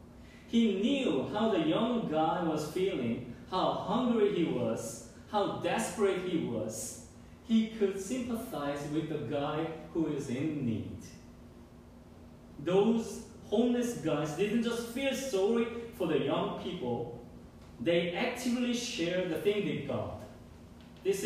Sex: male